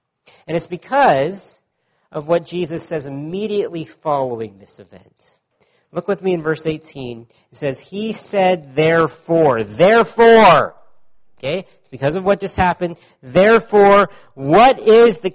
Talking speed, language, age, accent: 135 wpm, English, 40-59, American